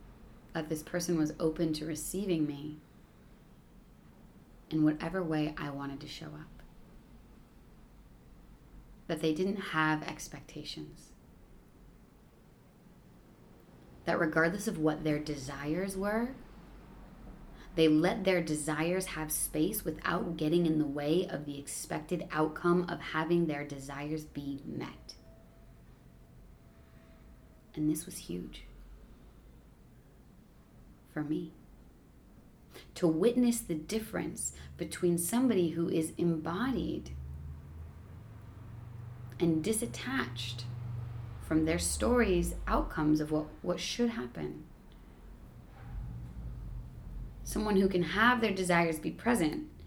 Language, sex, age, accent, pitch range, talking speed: English, female, 30-49, American, 120-175 Hz, 100 wpm